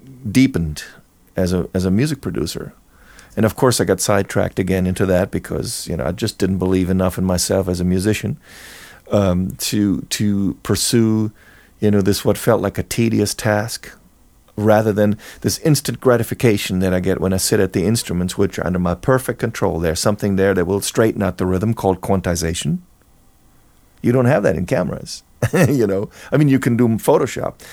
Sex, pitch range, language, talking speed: male, 95-120 Hz, English, 195 wpm